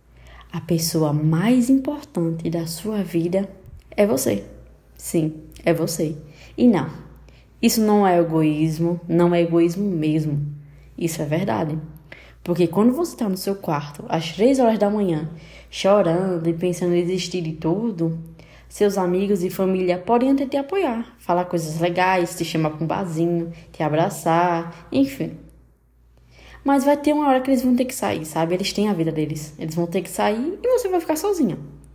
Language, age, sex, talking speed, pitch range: Portuguese, 10-29, female, 170 wpm, 165-225 Hz